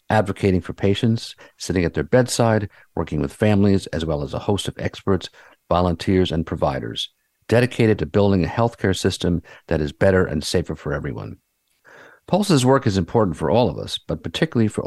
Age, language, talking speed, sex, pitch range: 50-69, English, 180 wpm, male, 85-110 Hz